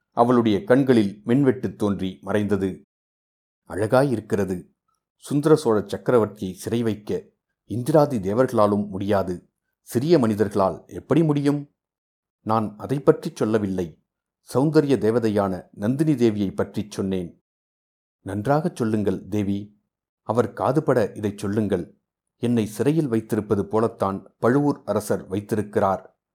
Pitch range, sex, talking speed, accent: 100-125 Hz, male, 95 wpm, native